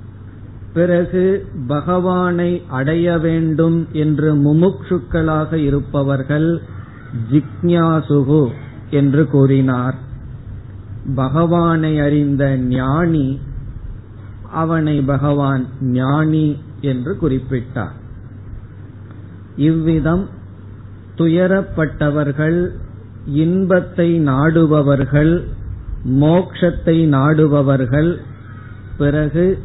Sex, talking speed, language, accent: male, 50 wpm, Tamil, native